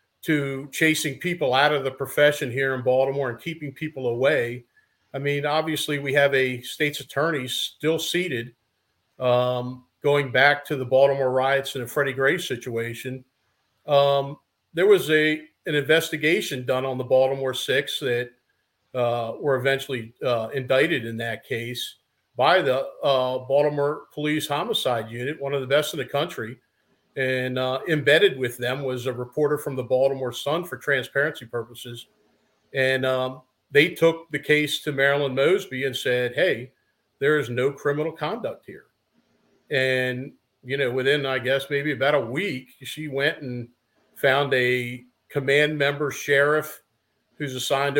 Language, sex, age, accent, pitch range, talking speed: English, male, 50-69, American, 130-150 Hz, 155 wpm